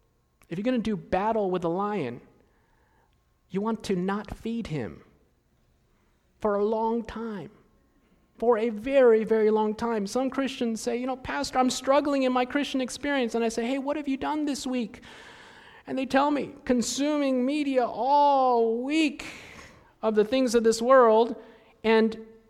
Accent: American